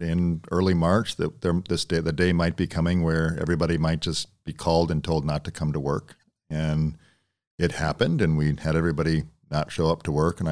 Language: English